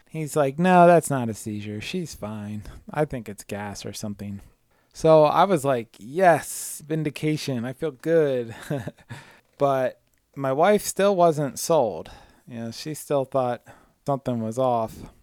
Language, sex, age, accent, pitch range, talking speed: English, male, 20-39, American, 110-140 Hz, 140 wpm